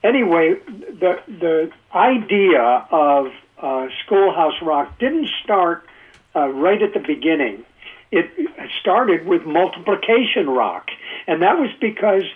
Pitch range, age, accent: 150-215 Hz, 60-79, American